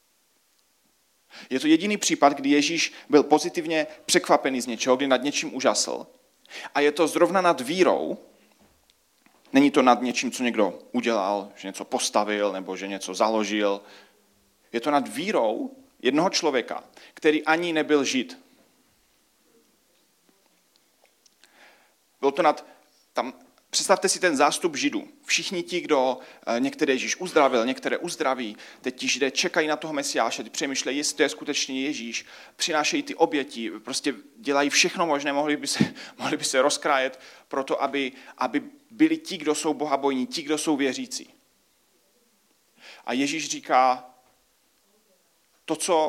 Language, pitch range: Czech, 130-175 Hz